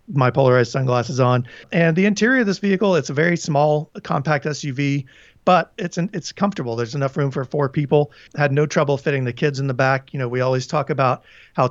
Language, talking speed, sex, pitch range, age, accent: English, 220 wpm, male, 130-155 Hz, 40-59, American